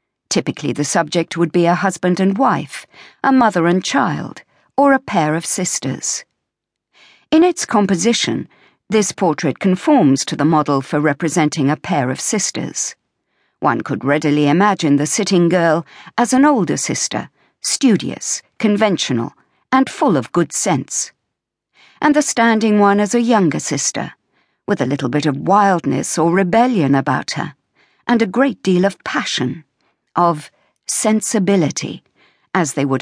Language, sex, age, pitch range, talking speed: English, female, 50-69, 155-215 Hz, 145 wpm